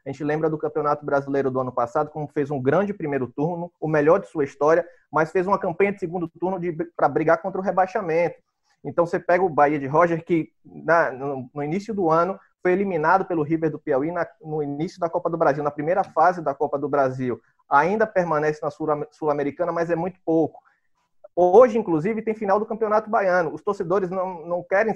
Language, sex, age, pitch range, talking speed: Portuguese, male, 20-39, 155-190 Hz, 200 wpm